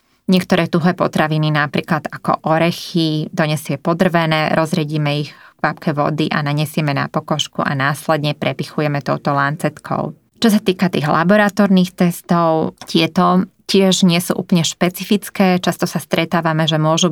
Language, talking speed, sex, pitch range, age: Slovak, 135 wpm, female, 155-180 Hz, 20-39